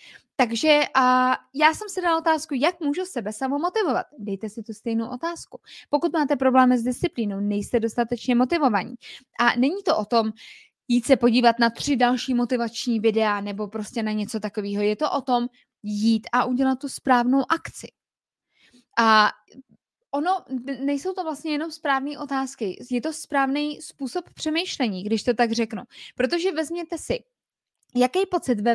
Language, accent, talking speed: Czech, native, 155 wpm